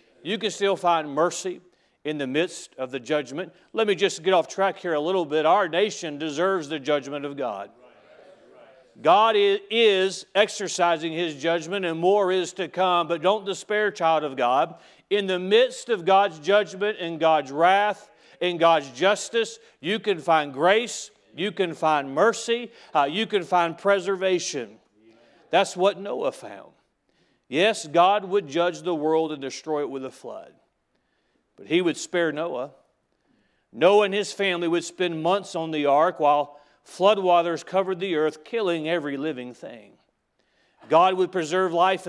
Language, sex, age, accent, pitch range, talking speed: English, male, 40-59, American, 160-200 Hz, 160 wpm